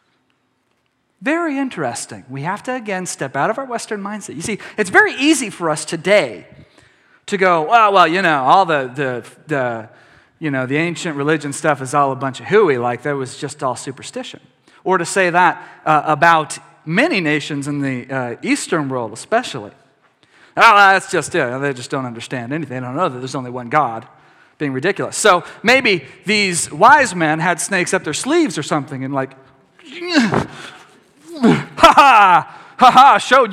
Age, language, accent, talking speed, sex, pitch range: 40-59, English, American, 175 wpm, male, 130-195 Hz